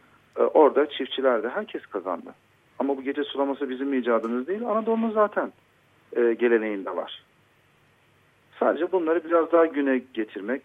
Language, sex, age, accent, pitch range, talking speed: Turkish, male, 40-59, native, 120-150 Hz, 130 wpm